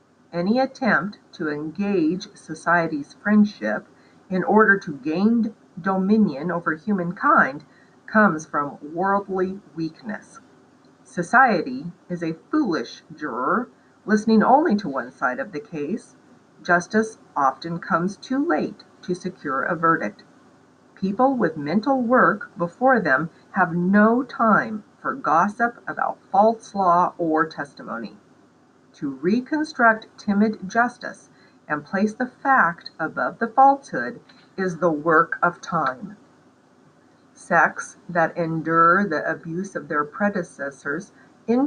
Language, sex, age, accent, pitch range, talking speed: English, female, 50-69, American, 165-225 Hz, 115 wpm